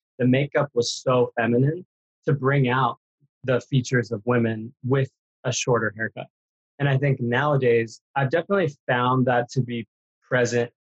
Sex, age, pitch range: male, 20-39, 115-135 Hz